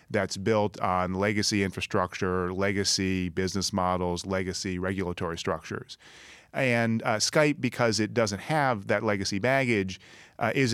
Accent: American